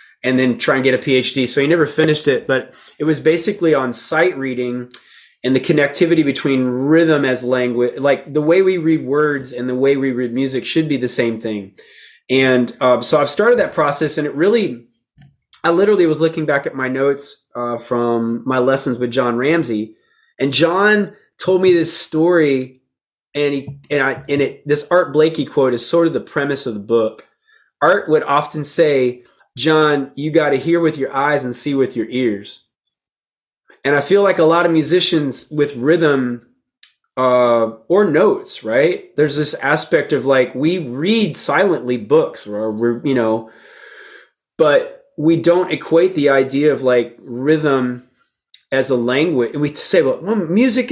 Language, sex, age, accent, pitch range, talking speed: English, male, 20-39, American, 125-165 Hz, 180 wpm